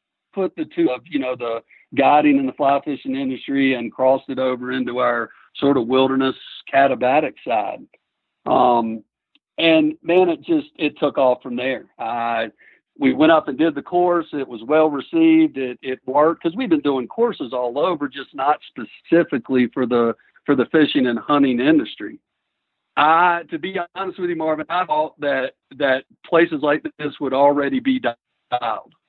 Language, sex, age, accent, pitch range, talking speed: English, male, 60-79, American, 130-175 Hz, 175 wpm